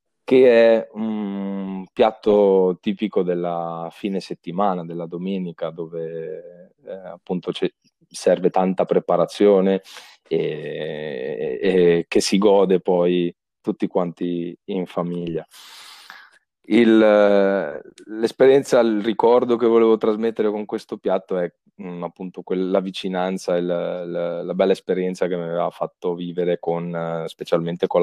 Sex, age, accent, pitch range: male, 20-39, native, 85-105 Hz